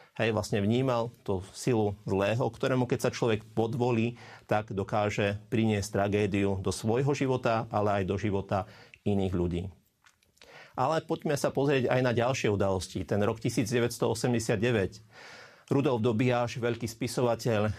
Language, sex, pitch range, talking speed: Slovak, male, 105-125 Hz, 130 wpm